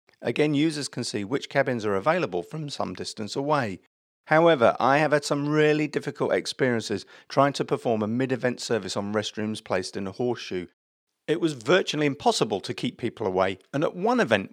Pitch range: 110-150 Hz